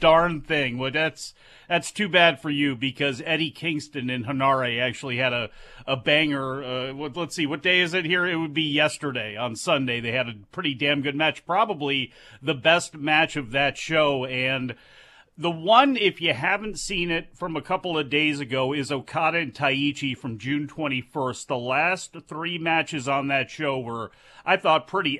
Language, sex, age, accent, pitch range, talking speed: English, male, 40-59, American, 140-170 Hz, 190 wpm